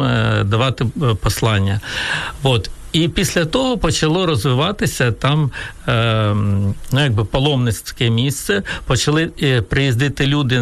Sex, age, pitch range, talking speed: male, 60-79, 115-150 Hz, 95 wpm